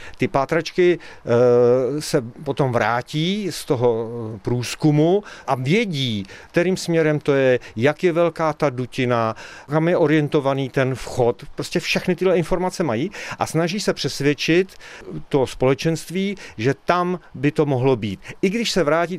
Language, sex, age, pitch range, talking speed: Czech, male, 40-59, 125-170 Hz, 140 wpm